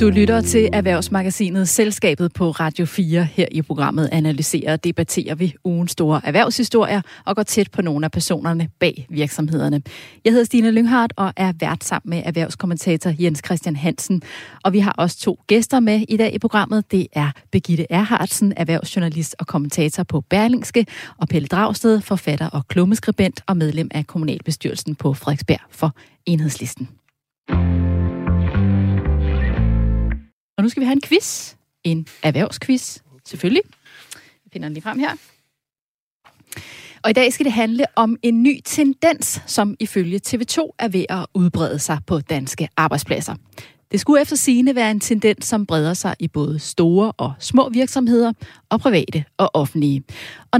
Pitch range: 155-220 Hz